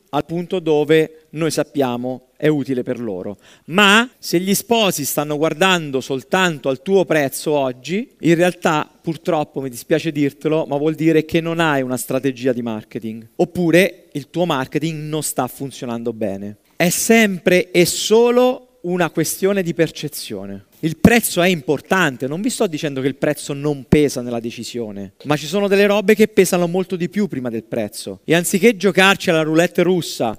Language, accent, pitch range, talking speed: Italian, native, 130-185 Hz, 170 wpm